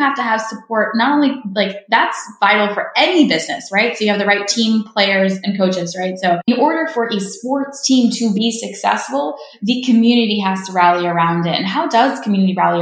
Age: 10-29